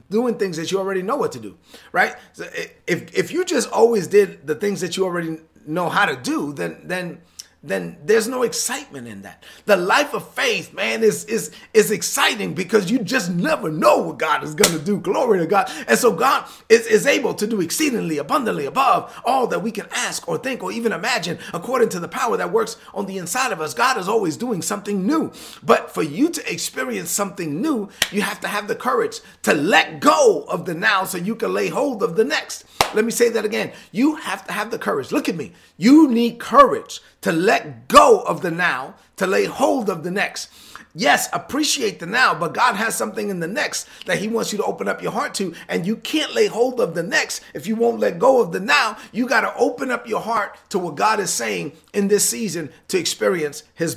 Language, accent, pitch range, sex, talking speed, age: English, American, 165-235 Hz, male, 230 wpm, 30-49